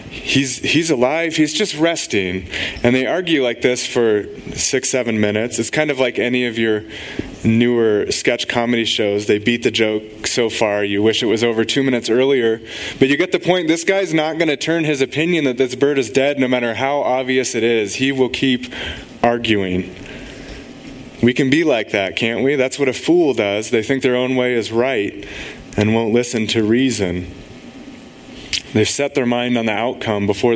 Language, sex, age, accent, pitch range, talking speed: English, male, 20-39, American, 110-140 Hz, 195 wpm